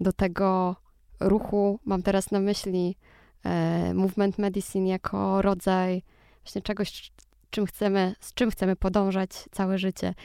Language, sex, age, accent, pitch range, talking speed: Polish, female, 20-39, native, 185-215 Hz, 115 wpm